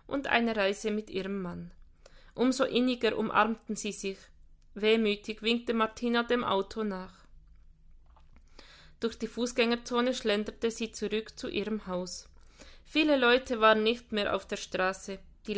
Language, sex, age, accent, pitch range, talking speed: German, female, 20-39, Austrian, 200-240 Hz, 135 wpm